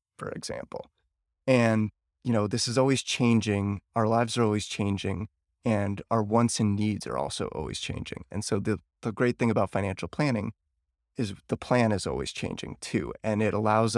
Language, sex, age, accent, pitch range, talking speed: English, male, 30-49, American, 80-115 Hz, 180 wpm